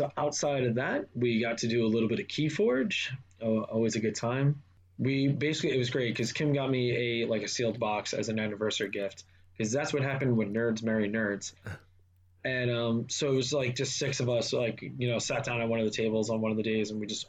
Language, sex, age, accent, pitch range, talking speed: English, male, 20-39, American, 105-140 Hz, 255 wpm